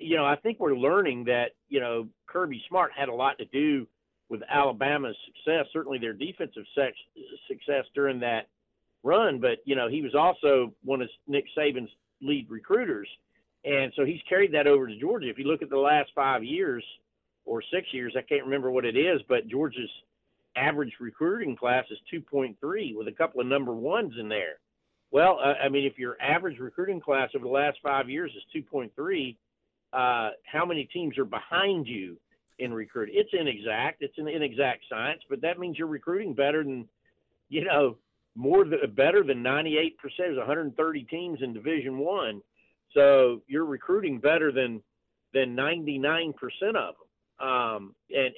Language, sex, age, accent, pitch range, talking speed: English, male, 50-69, American, 130-165 Hz, 175 wpm